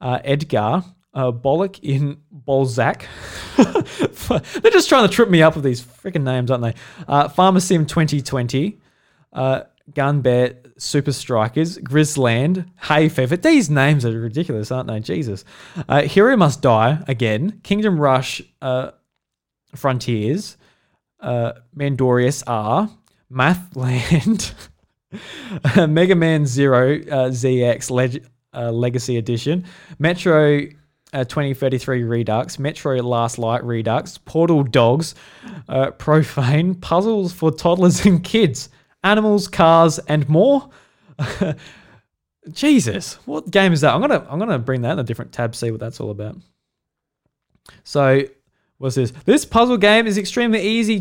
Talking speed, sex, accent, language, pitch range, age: 130 wpm, male, Australian, English, 130-180 Hz, 20-39